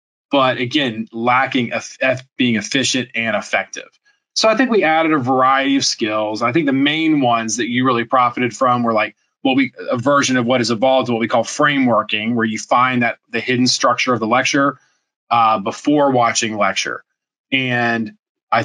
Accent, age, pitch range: American, 20-39, 115-140 Hz